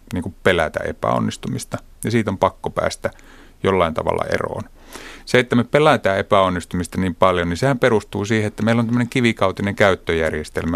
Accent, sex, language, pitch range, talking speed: native, male, Finnish, 90-110 Hz, 155 wpm